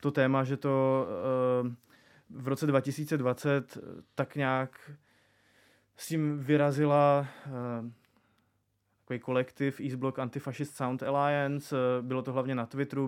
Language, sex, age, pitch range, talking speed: Czech, male, 20-39, 120-130 Hz, 120 wpm